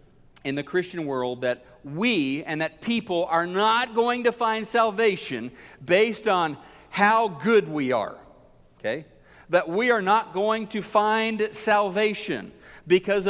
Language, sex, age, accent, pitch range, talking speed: English, male, 40-59, American, 160-220 Hz, 140 wpm